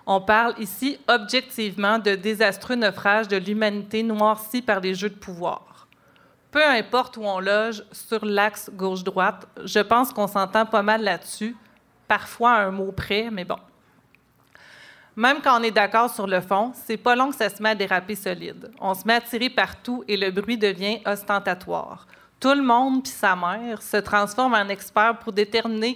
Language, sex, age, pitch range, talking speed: French, female, 30-49, 200-235 Hz, 180 wpm